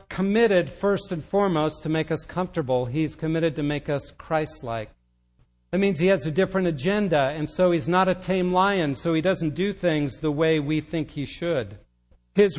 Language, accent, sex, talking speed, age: English, American, male, 190 wpm, 60-79